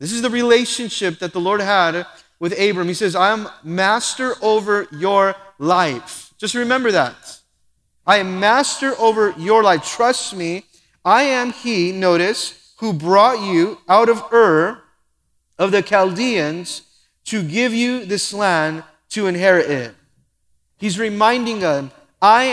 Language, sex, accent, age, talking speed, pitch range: English, male, American, 30-49, 145 wpm, 180-235 Hz